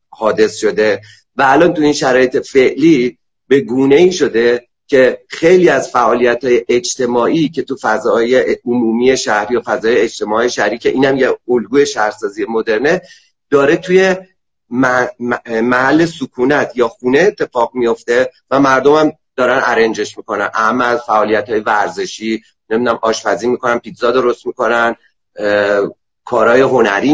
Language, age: Persian, 40-59